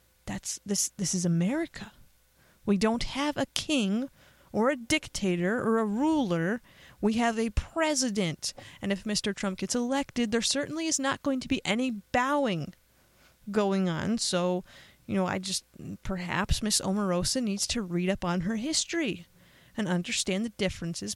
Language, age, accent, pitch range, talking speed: English, 30-49, American, 180-245 Hz, 160 wpm